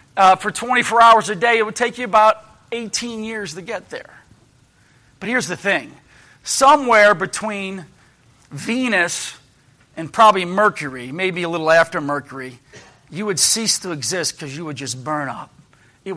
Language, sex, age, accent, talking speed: English, male, 40-59, American, 160 wpm